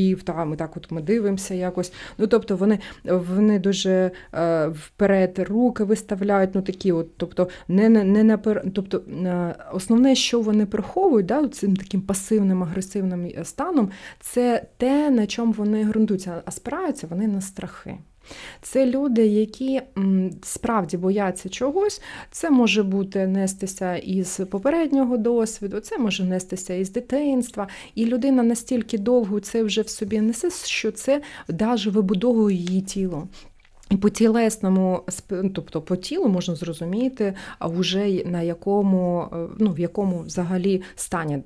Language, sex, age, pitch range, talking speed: Ukrainian, female, 30-49, 180-220 Hz, 135 wpm